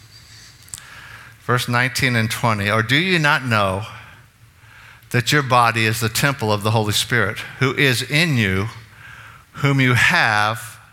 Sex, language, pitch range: male, English, 110-125 Hz